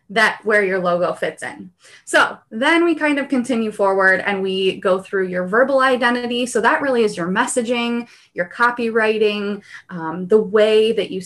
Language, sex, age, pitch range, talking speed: English, female, 20-39, 190-240 Hz, 175 wpm